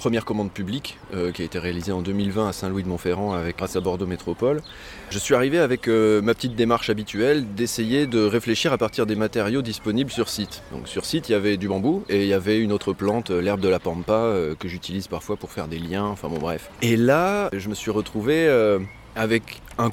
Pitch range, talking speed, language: 95-120 Hz, 225 wpm, French